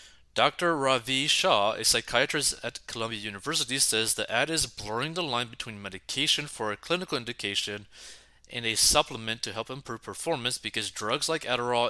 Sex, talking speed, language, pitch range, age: male, 160 wpm, English, 105-140 Hz, 20-39